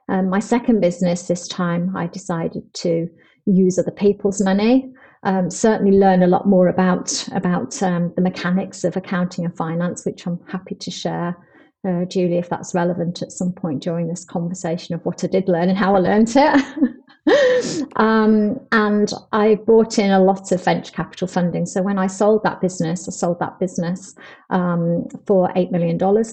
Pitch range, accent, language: 175-200 Hz, British, English